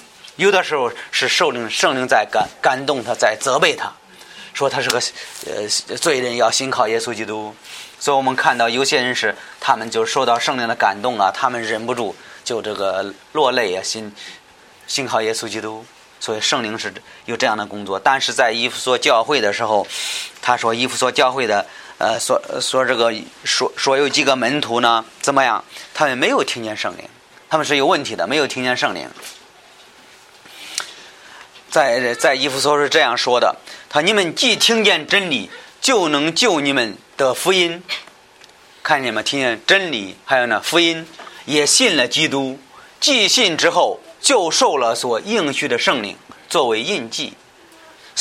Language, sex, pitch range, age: Chinese, male, 115-175 Hz, 20-39